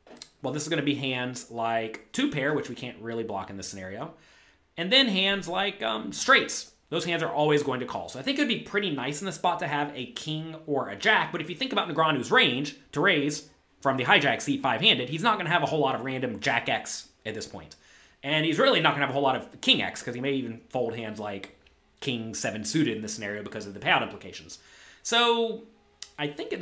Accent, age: American, 30-49